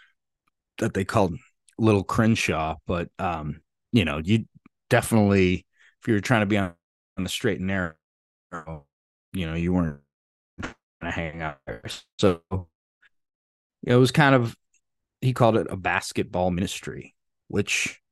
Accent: American